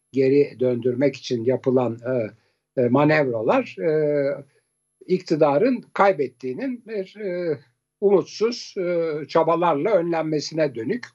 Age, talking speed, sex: 60-79, 85 wpm, male